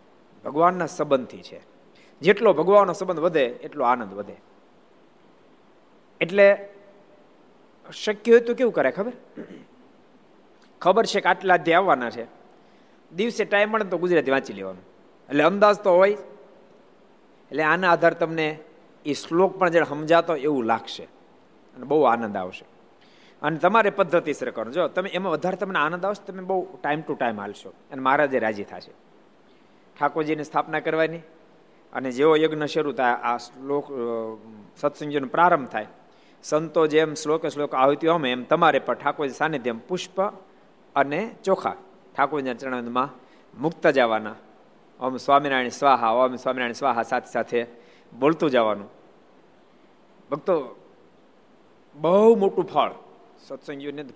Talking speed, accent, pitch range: 130 wpm, native, 135-185 Hz